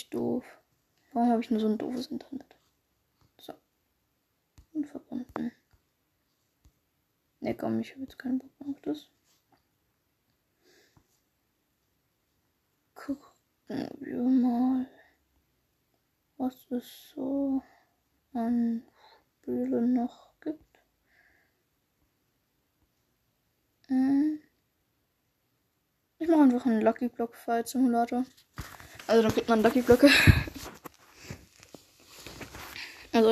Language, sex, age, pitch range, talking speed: German, female, 10-29, 245-295 Hz, 85 wpm